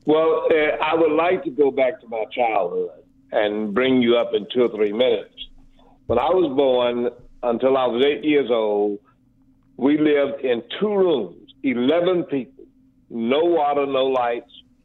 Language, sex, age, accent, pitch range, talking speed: English, male, 60-79, American, 130-165 Hz, 165 wpm